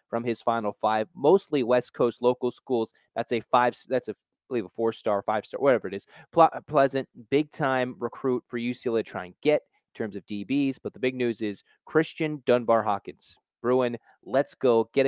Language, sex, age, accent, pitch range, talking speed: English, male, 30-49, American, 115-145 Hz, 195 wpm